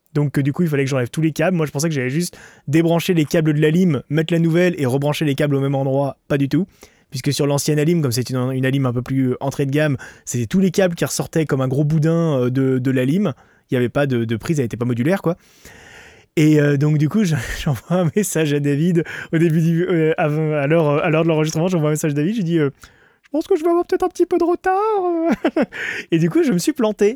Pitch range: 145-185 Hz